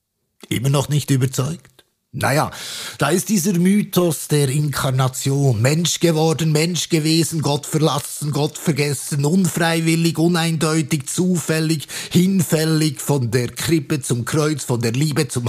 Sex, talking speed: male, 125 wpm